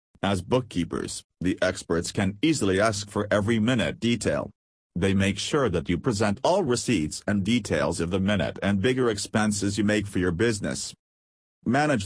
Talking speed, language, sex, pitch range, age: 165 wpm, English, male, 95-120 Hz, 40-59